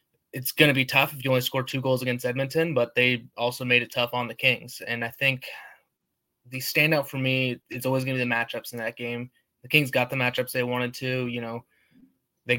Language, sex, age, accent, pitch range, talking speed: English, male, 20-39, American, 120-130 Hz, 240 wpm